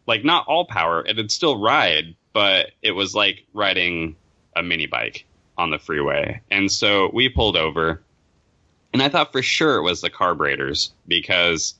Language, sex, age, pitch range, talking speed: English, male, 20-39, 85-110 Hz, 175 wpm